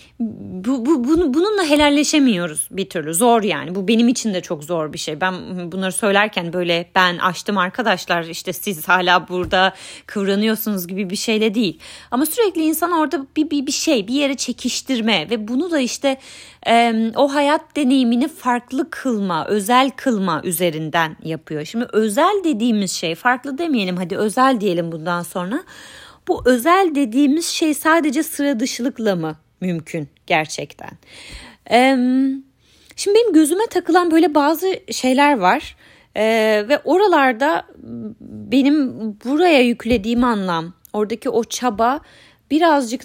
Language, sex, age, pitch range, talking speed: Turkish, female, 30-49, 185-280 Hz, 135 wpm